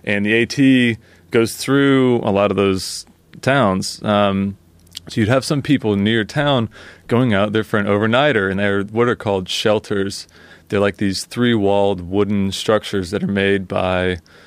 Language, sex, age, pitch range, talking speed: English, male, 30-49, 95-115 Hz, 165 wpm